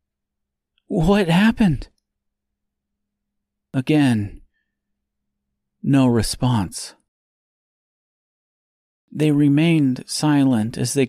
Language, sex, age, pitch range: English, male, 40-59, 95-140 Hz